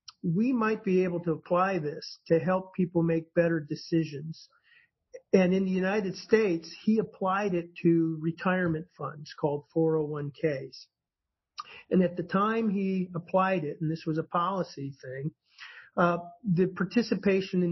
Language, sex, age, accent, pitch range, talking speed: English, male, 50-69, American, 165-205 Hz, 145 wpm